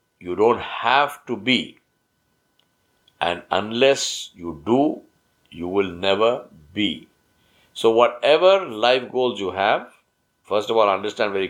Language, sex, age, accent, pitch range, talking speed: English, male, 60-79, Indian, 105-135 Hz, 125 wpm